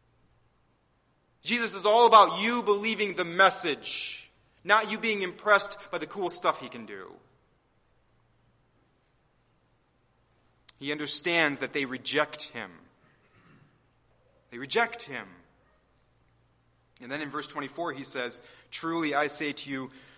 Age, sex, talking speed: 30-49, male, 120 wpm